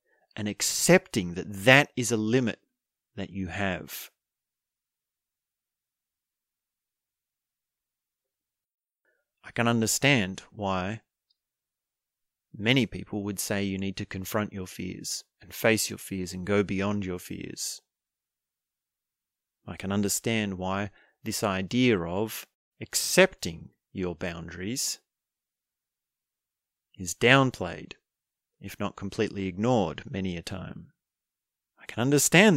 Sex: male